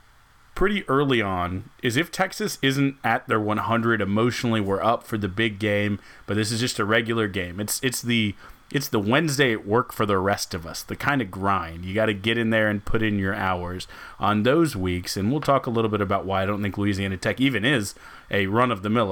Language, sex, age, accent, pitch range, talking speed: English, male, 30-49, American, 100-120 Hz, 225 wpm